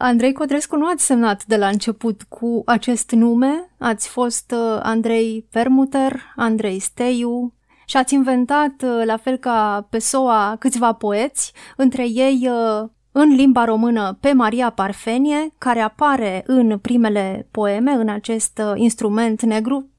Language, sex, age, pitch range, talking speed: Romanian, female, 30-49, 215-260 Hz, 130 wpm